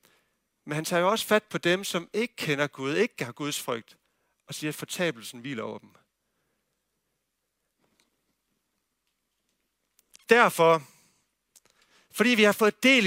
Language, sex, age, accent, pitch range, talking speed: Danish, male, 60-79, native, 145-205 Hz, 135 wpm